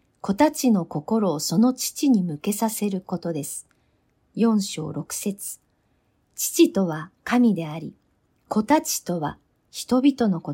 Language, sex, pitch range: Japanese, female, 175-255 Hz